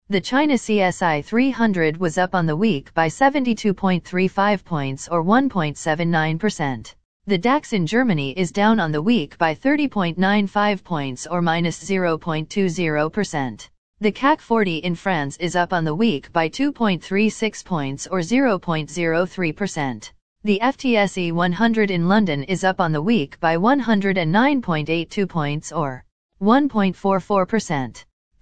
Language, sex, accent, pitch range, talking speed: English, female, American, 160-220 Hz, 125 wpm